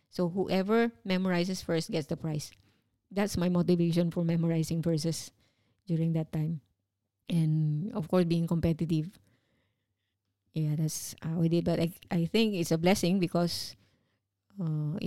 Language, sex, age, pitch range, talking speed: English, female, 20-39, 155-180 Hz, 140 wpm